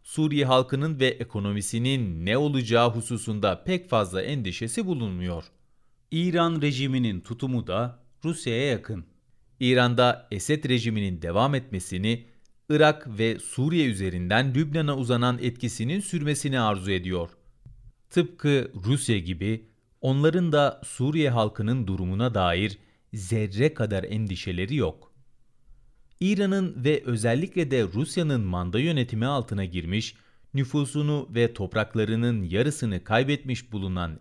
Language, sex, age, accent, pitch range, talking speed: Turkish, male, 40-59, native, 105-135 Hz, 105 wpm